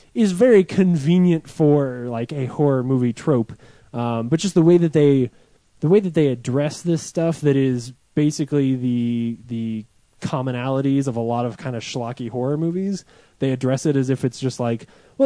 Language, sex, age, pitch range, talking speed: English, male, 20-39, 125-170 Hz, 185 wpm